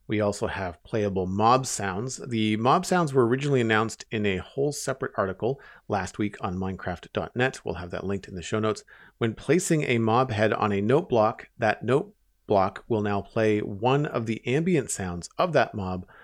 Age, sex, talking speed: 40-59, male, 190 wpm